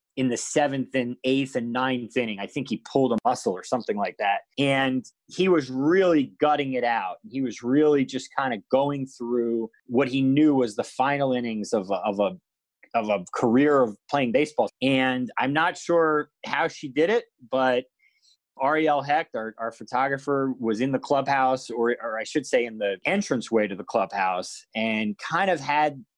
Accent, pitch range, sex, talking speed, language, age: American, 115-145 Hz, male, 190 wpm, English, 30-49